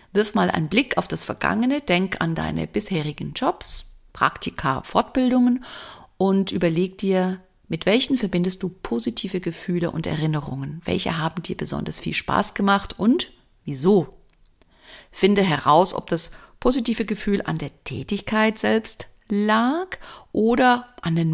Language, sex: German, female